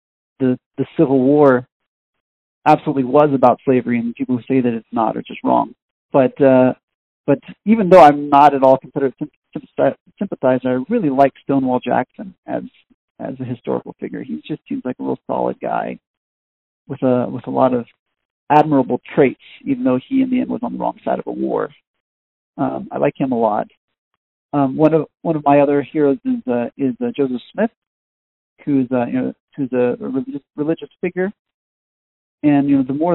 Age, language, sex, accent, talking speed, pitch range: 40-59, English, male, American, 190 wpm, 130-150 Hz